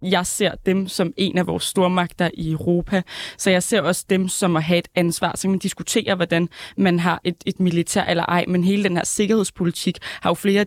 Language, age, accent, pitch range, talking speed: Danish, 20-39, native, 175-200 Hz, 220 wpm